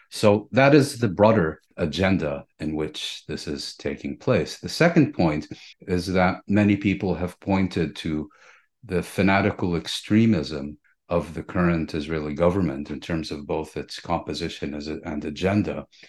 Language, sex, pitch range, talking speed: English, male, 75-100 Hz, 150 wpm